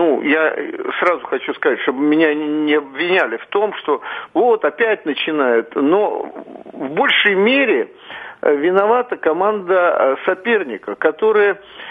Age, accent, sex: 50-69, native, male